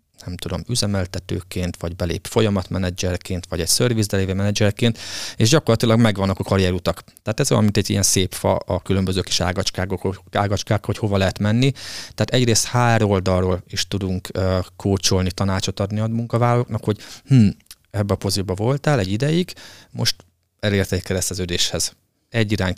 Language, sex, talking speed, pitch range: Hungarian, male, 150 wpm, 95-115 Hz